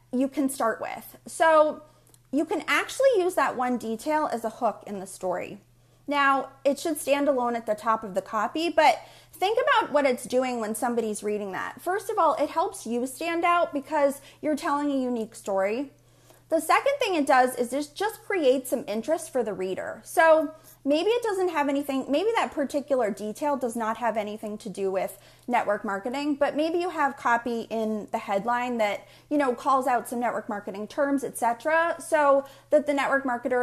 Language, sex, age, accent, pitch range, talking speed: English, female, 30-49, American, 220-300 Hz, 195 wpm